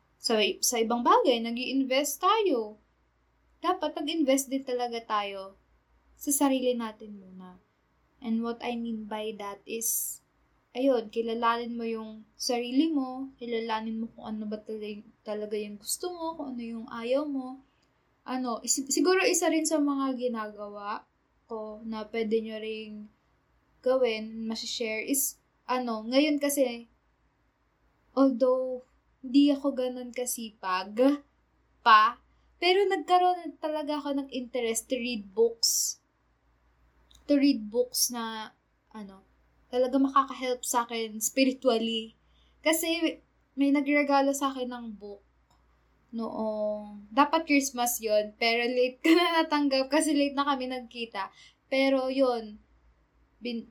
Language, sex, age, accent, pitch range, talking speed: Filipino, female, 20-39, native, 220-275 Hz, 125 wpm